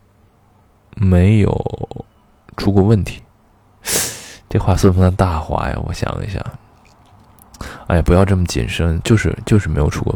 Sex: male